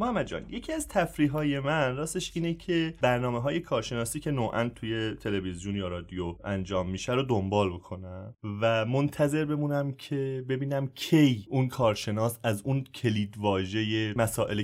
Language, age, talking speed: English, 30-49, 145 wpm